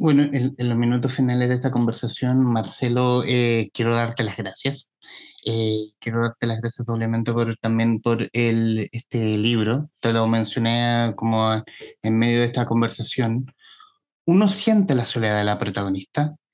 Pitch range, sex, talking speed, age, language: 115-145 Hz, male, 155 wpm, 20-39, Spanish